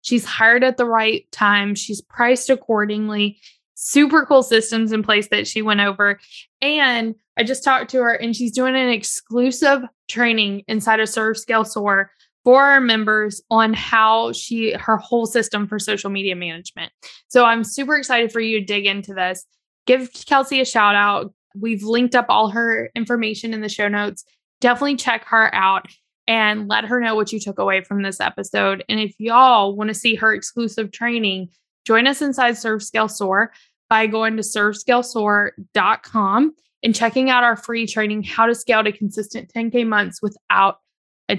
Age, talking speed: 20-39, 175 wpm